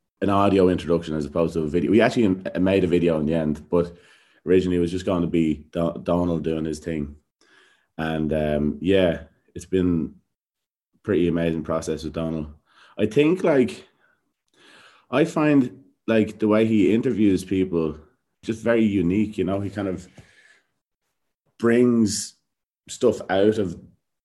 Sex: male